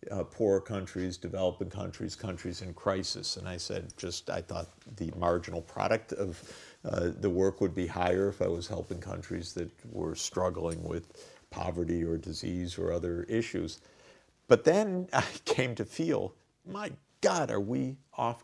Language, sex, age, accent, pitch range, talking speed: English, male, 50-69, American, 95-130 Hz, 165 wpm